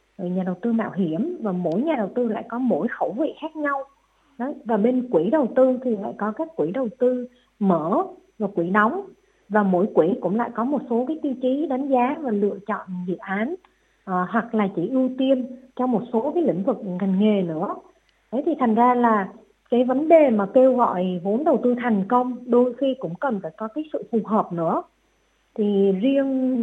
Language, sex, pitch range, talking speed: Vietnamese, female, 200-260 Hz, 215 wpm